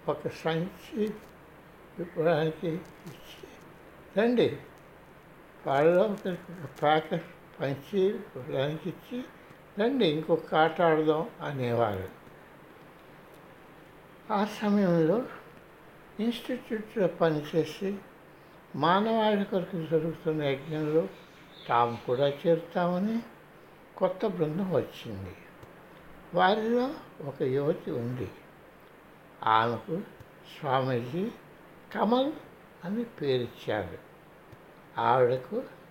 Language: Telugu